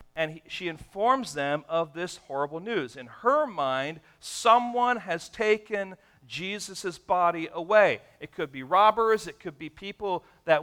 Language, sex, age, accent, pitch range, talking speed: English, male, 50-69, American, 135-185 Hz, 145 wpm